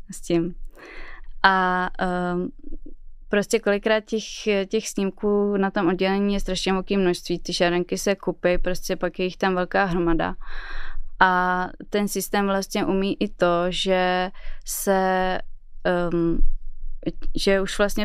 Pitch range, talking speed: 175-195 Hz, 135 wpm